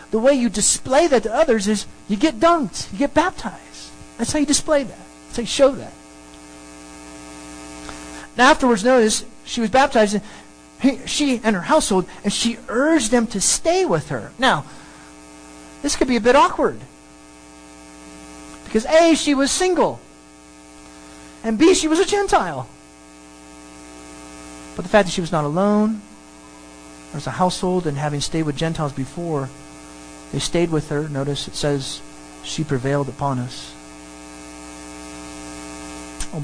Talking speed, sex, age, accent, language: 150 wpm, male, 40-59, American, English